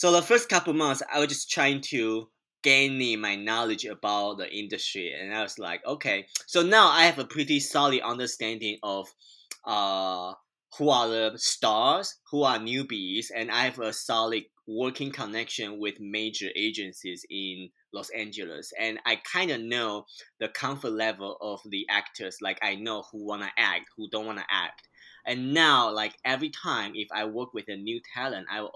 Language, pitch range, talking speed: English, 105-135 Hz, 185 wpm